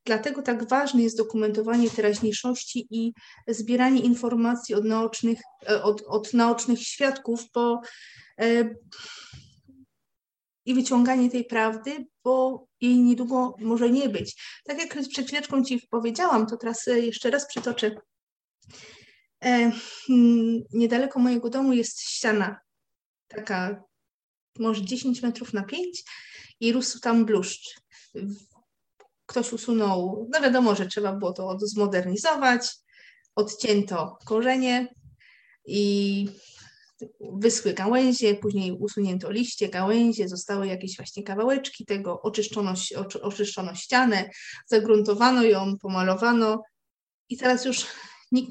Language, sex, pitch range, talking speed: Polish, female, 210-250 Hz, 105 wpm